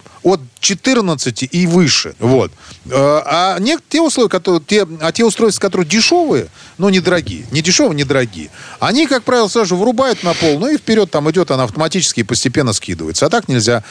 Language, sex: Russian, male